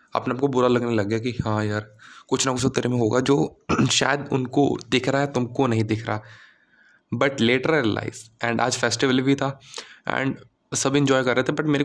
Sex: male